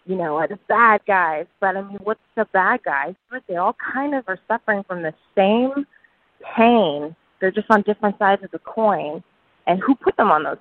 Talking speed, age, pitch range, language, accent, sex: 205 wpm, 20-39, 165-220 Hz, English, American, female